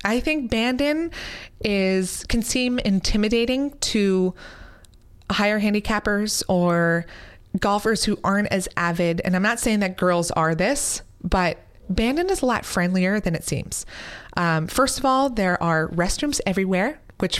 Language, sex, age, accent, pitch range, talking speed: English, female, 20-39, American, 165-210 Hz, 140 wpm